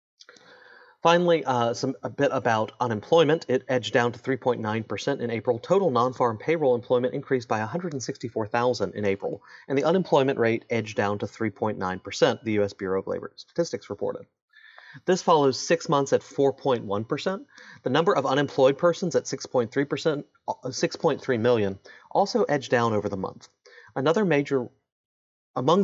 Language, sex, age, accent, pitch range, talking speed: English, male, 30-49, American, 110-155 Hz, 145 wpm